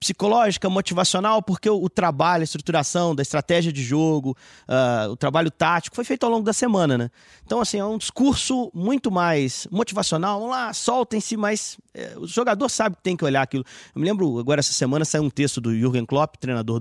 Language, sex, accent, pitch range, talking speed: Portuguese, male, Brazilian, 130-190 Hz, 200 wpm